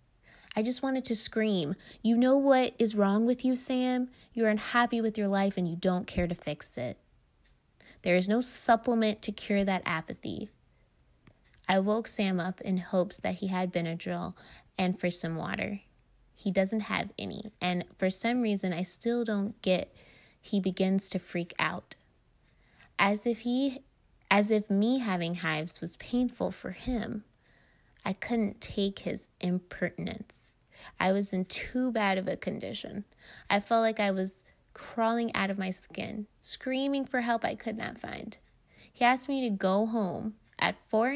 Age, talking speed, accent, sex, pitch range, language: 20-39, 165 wpm, American, female, 180-225 Hz, English